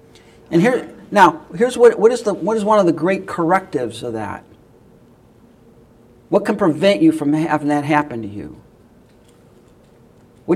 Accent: American